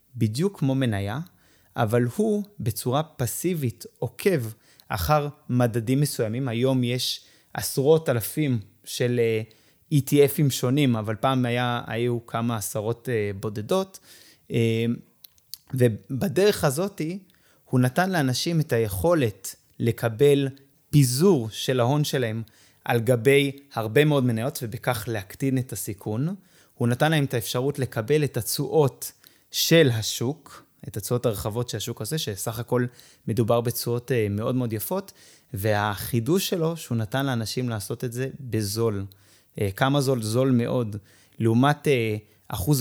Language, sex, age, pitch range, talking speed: Hebrew, male, 20-39, 115-145 Hz, 120 wpm